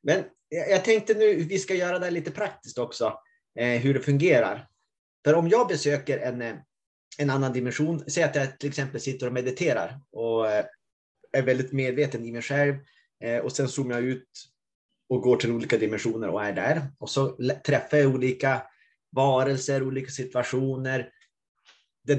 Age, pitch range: 30-49, 125-155 Hz